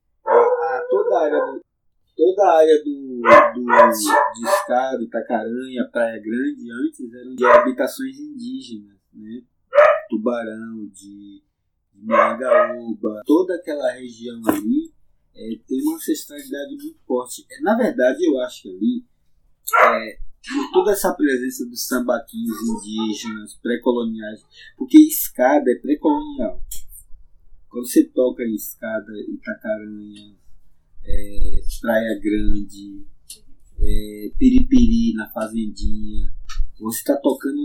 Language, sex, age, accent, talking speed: Portuguese, male, 20-39, Brazilian, 110 wpm